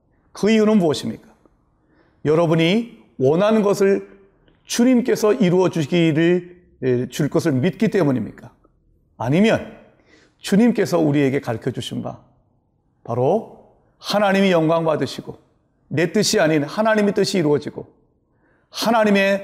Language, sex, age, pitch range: Korean, male, 40-59, 150-210 Hz